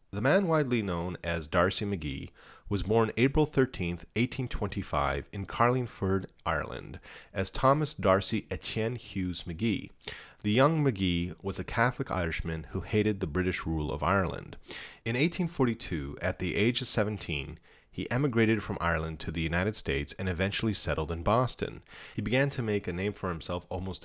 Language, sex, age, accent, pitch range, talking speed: English, male, 40-59, American, 85-115 Hz, 160 wpm